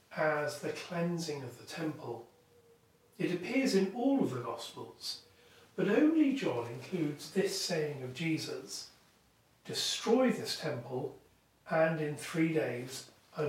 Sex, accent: male, British